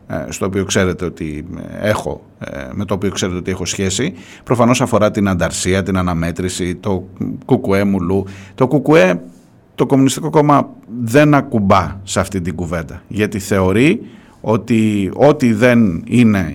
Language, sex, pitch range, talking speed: Greek, male, 100-140 Hz, 125 wpm